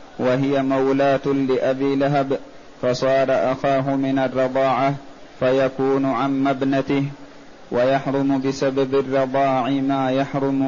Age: 20-39